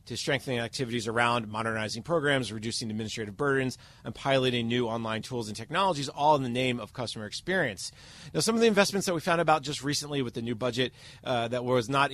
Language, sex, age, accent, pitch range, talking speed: English, male, 30-49, American, 120-145 Hz, 210 wpm